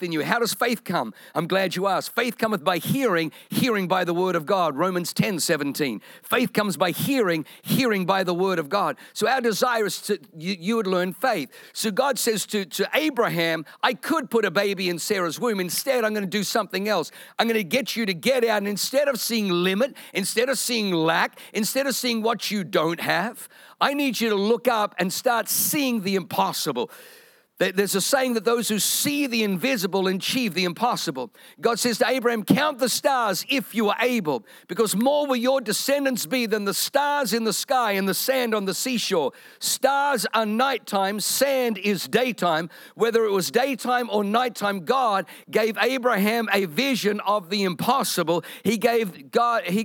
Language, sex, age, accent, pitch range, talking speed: English, male, 50-69, British, 190-245 Hz, 195 wpm